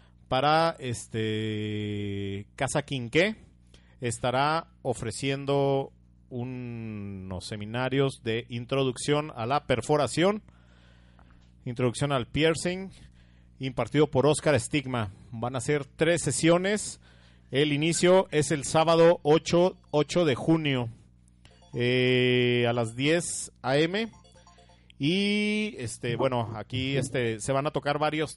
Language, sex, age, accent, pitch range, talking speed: Spanish, male, 40-59, Mexican, 110-155 Hz, 105 wpm